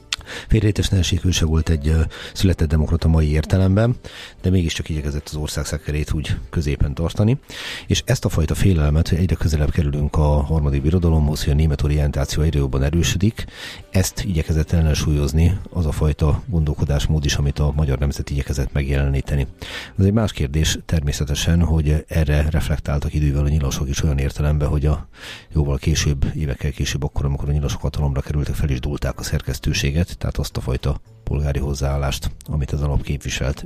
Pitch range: 70-85 Hz